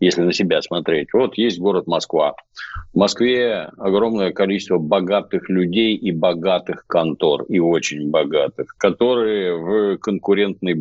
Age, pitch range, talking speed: 50-69, 85-110 Hz, 130 wpm